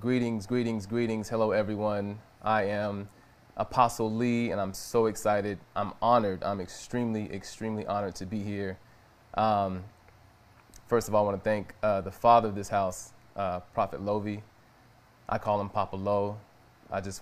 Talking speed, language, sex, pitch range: 160 wpm, English, male, 100-120 Hz